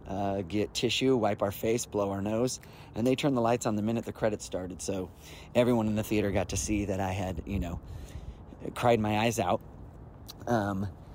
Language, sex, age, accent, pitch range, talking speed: English, male, 30-49, American, 100-125 Hz, 200 wpm